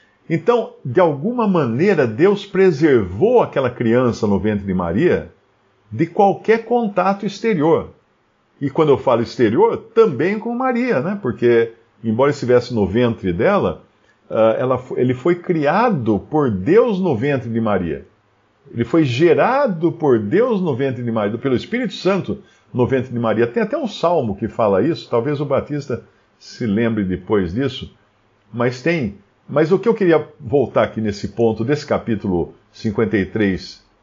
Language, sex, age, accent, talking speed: Portuguese, male, 50-69, Brazilian, 150 wpm